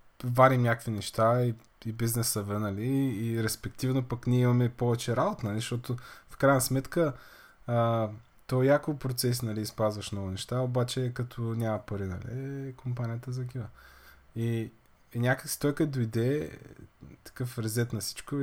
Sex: male